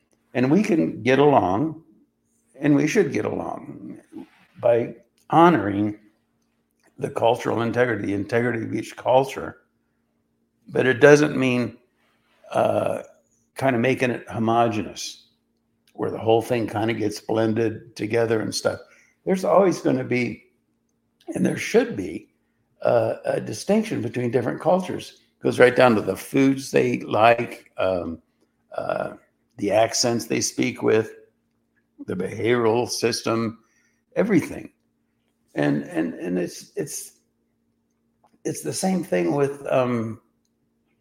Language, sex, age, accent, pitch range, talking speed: English, male, 60-79, American, 105-130 Hz, 125 wpm